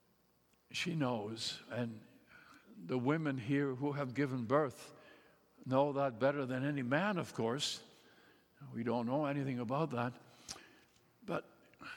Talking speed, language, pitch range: 125 wpm, English, 130-190 Hz